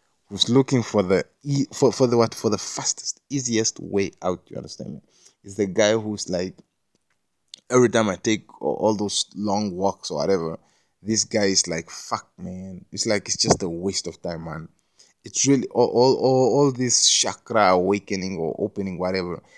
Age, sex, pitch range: 20-39, male, 95-120 Hz